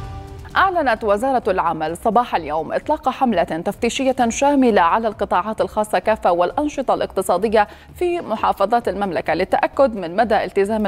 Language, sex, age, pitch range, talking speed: Arabic, female, 30-49, 190-250 Hz, 120 wpm